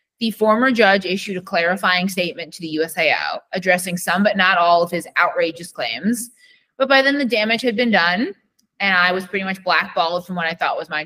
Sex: female